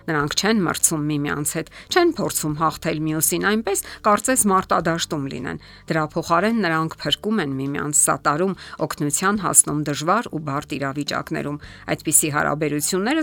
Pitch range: 145-205 Hz